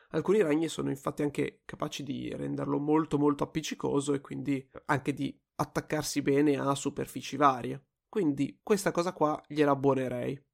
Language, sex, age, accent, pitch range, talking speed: Italian, male, 20-39, native, 135-150 Hz, 150 wpm